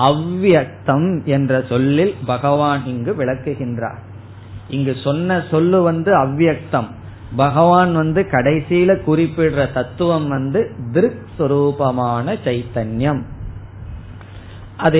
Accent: native